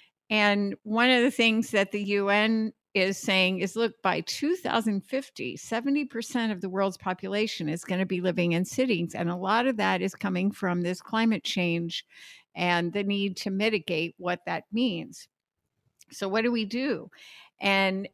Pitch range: 180-215 Hz